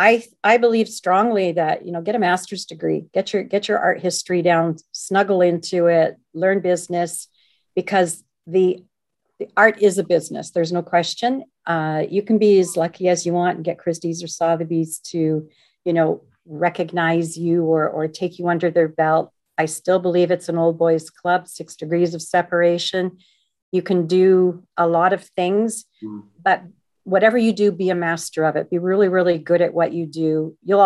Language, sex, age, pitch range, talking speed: English, female, 50-69, 170-200 Hz, 185 wpm